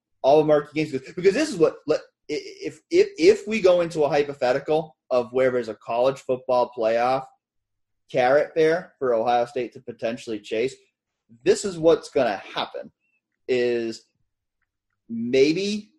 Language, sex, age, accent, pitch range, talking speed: English, male, 30-49, American, 110-160 Hz, 145 wpm